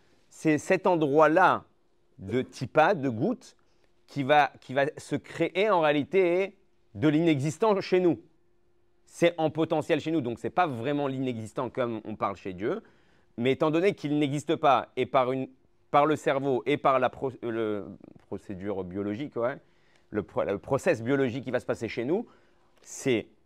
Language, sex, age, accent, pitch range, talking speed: French, male, 30-49, French, 115-155 Hz, 170 wpm